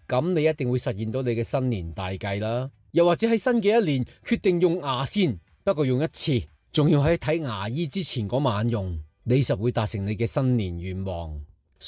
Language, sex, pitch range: Chinese, male, 120-180 Hz